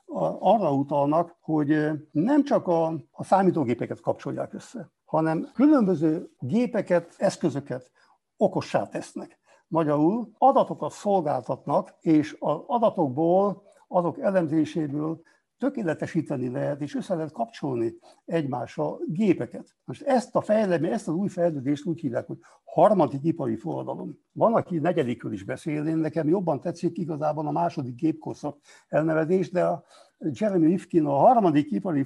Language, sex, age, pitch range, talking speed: Hungarian, male, 60-79, 145-195 Hz, 125 wpm